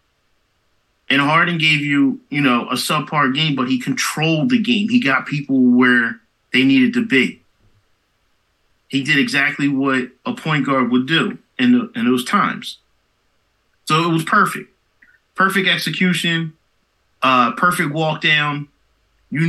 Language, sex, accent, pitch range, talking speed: English, male, American, 125-165 Hz, 140 wpm